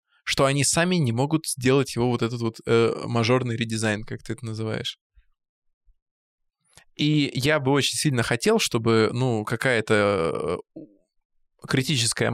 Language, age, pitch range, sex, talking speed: Russian, 20-39, 110-135 Hz, male, 130 wpm